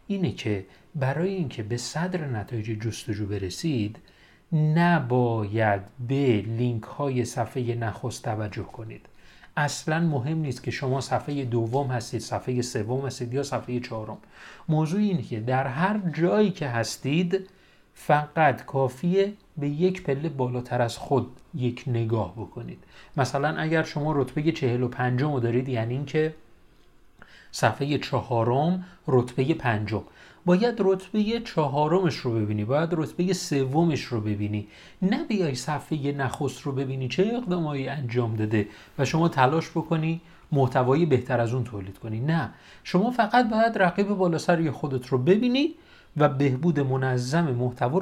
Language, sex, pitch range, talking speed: Persian, male, 120-170 Hz, 130 wpm